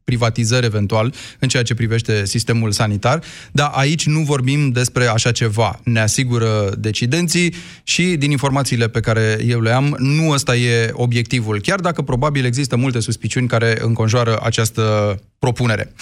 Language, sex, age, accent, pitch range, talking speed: Romanian, male, 20-39, native, 115-140 Hz, 150 wpm